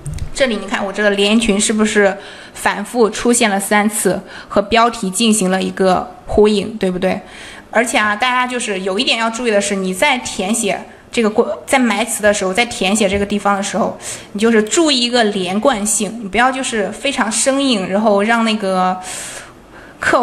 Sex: female